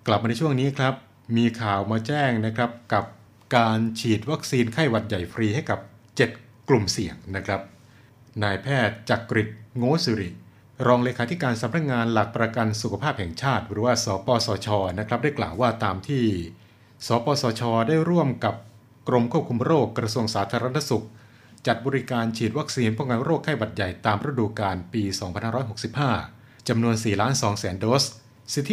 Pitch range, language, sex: 105-125 Hz, Thai, male